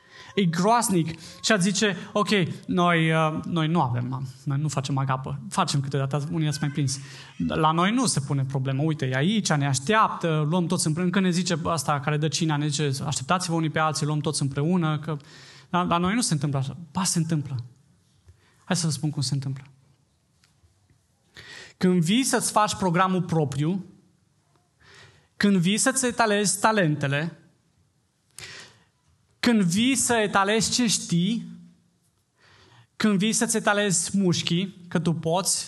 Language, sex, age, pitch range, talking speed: Romanian, male, 20-39, 150-200 Hz, 155 wpm